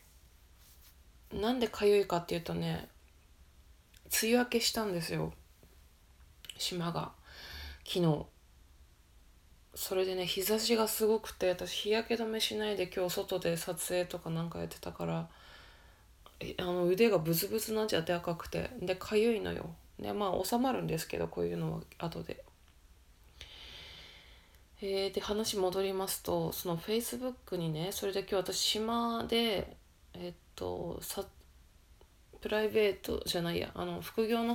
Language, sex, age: Japanese, female, 20-39